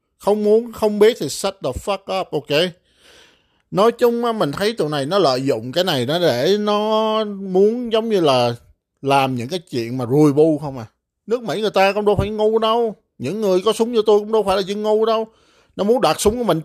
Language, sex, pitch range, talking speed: Vietnamese, male, 140-210 Hz, 240 wpm